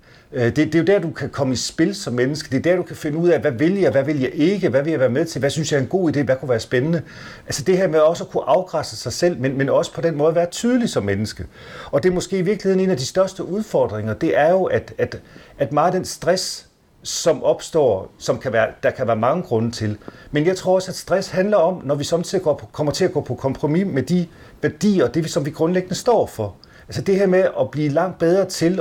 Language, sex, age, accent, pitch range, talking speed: Danish, male, 40-59, native, 125-175 Hz, 270 wpm